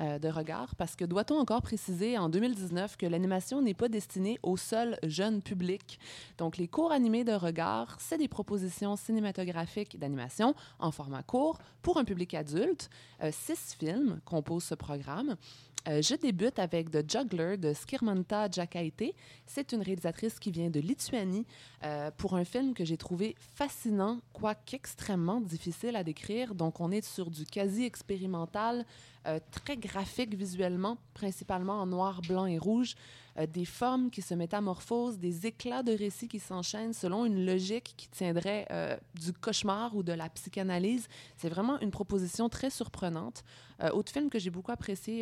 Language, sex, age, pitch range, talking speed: French, female, 20-39, 170-220 Hz, 165 wpm